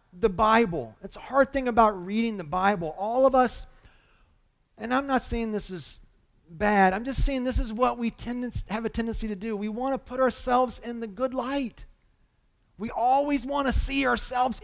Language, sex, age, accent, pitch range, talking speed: English, male, 40-59, American, 185-265 Hz, 195 wpm